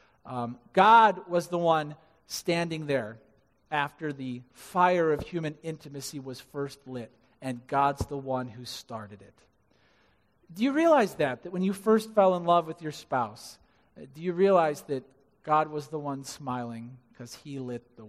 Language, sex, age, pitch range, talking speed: English, male, 40-59, 150-205 Hz, 165 wpm